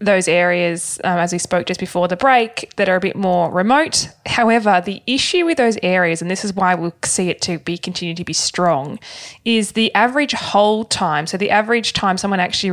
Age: 20-39